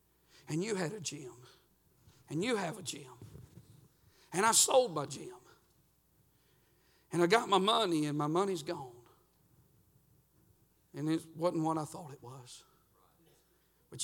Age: 60-79